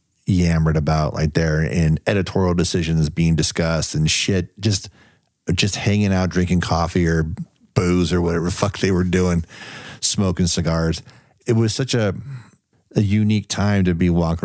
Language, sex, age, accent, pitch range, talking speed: English, male, 40-59, American, 85-100 Hz, 160 wpm